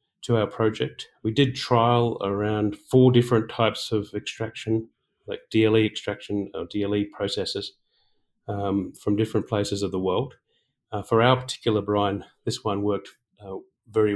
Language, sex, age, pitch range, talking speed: English, male, 40-59, 100-115 Hz, 150 wpm